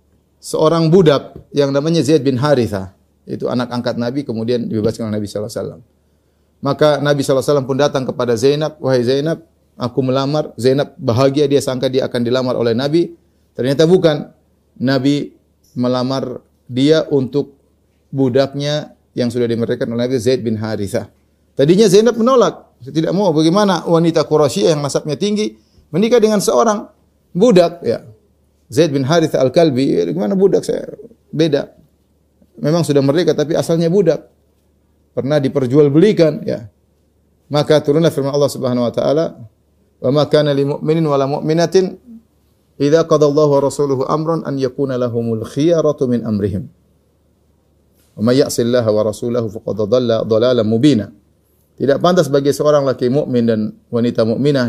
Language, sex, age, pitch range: Indonesian, male, 30-49, 115-155 Hz